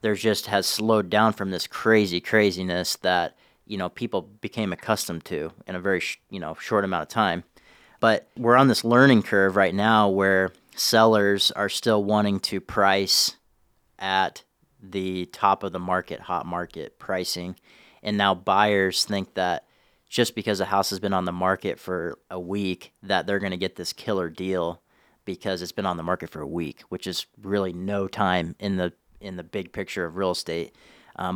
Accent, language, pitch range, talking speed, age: American, English, 95-105 Hz, 190 wpm, 30-49